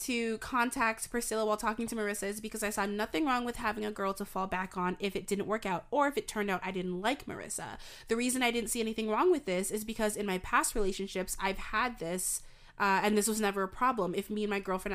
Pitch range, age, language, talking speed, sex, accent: 195-230 Hz, 20-39, English, 255 wpm, female, American